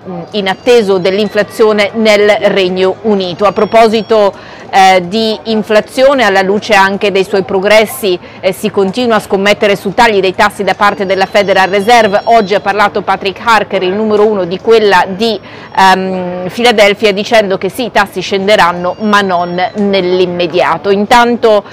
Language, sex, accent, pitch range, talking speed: Italian, female, native, 195-225 Hz, 150 wpm